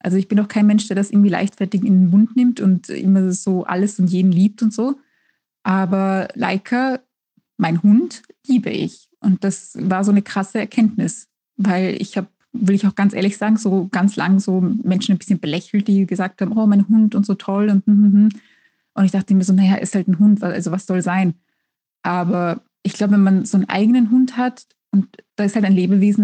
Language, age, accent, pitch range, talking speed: German, 20-39, German, 190-220 Hz, 215 wpm